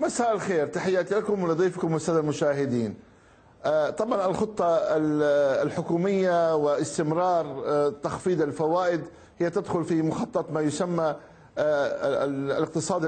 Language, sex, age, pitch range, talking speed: Arabic, male, 50-69, 160-195 Hz, 90 wpm